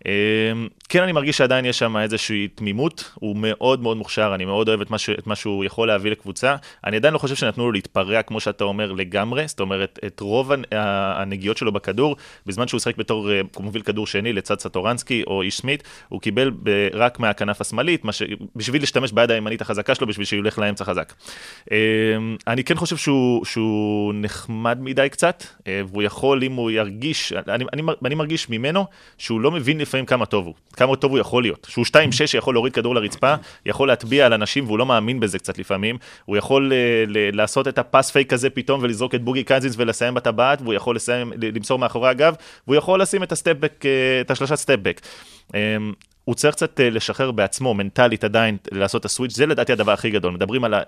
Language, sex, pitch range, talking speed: Hebrew, male, 105-130 Hz, 185 wpm